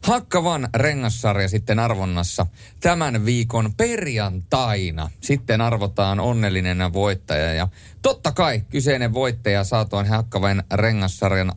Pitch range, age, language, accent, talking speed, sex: 100-130 Hz, 30-49, Finnish, native, 100 wpm, male